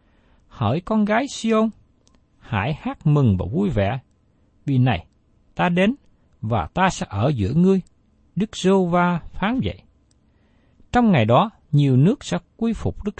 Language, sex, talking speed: Vietnamese, male, 155 wpm